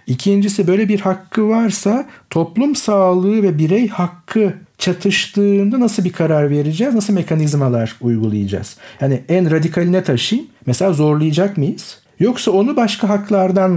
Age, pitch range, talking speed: 50-69, 130-200 Hz, 130 wpm